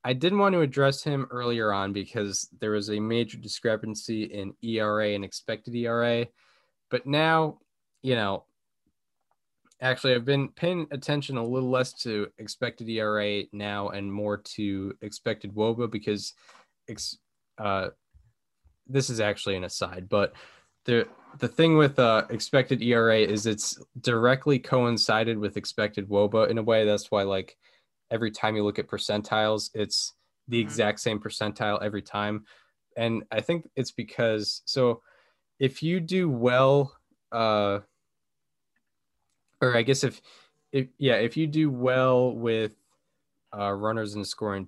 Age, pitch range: 10-29, 100-125 Hz